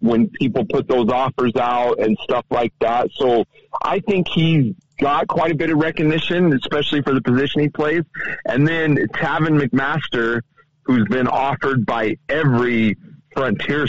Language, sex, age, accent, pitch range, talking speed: English, male, 40-59, American, 120-150 Hz, 155 wpm